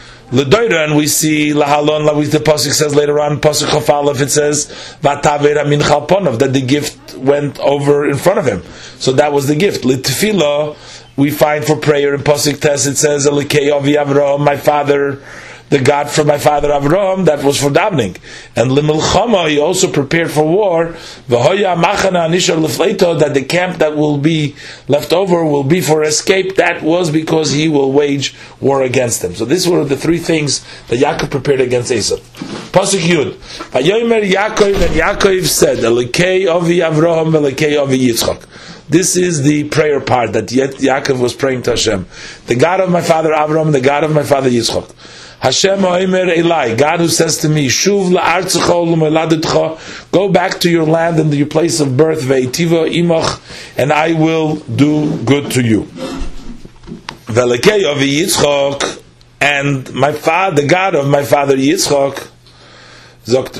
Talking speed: 155 wpm